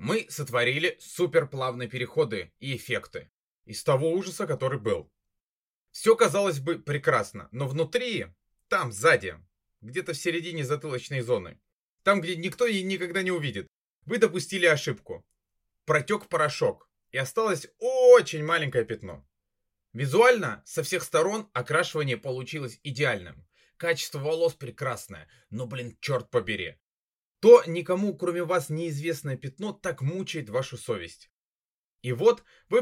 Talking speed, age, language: 125 wpm, 20-39, Russian